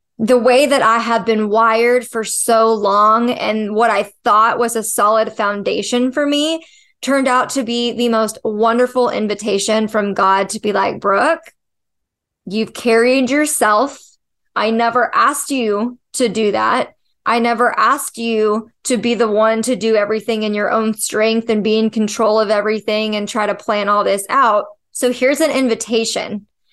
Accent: American